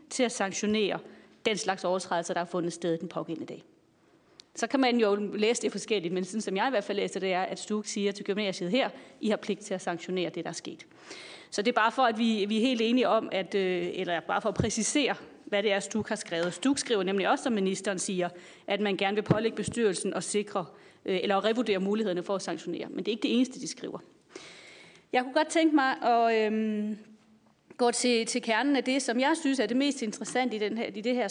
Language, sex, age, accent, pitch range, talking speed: Danish, female, 30-49, native, 195-245 Hz, 240 wpm